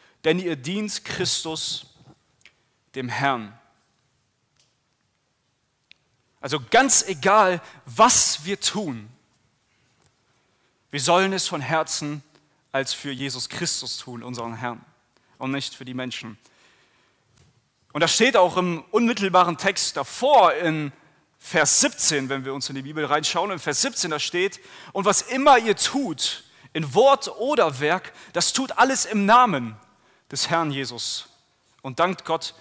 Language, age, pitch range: German, 30-49, 130-180 Hz